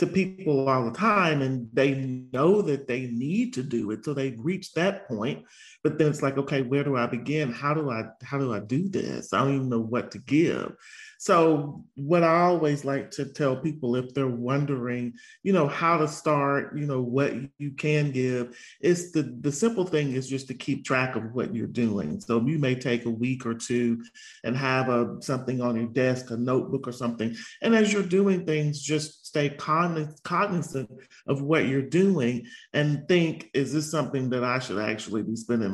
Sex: male